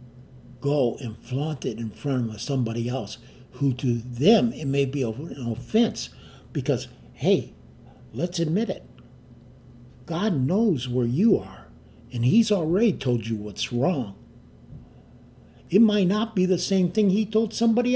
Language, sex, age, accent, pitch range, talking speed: English, male, 60-79, American, 120-170 Hz, 145 wpm